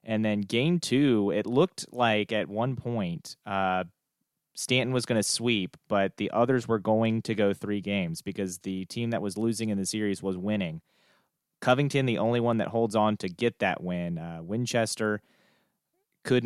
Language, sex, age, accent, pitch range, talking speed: English, male, 30-49, American, 95-115 Hz, 180 wpm